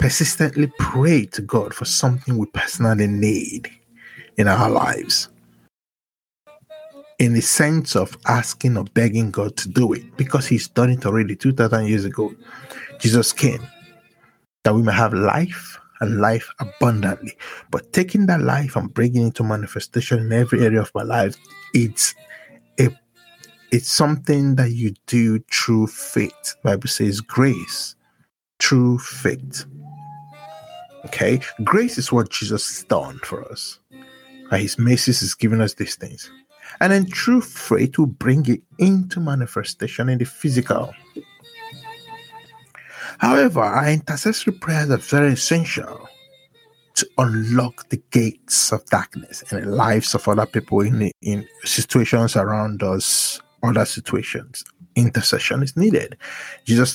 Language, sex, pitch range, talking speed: English, male, 110-150 Hz, 135 wpm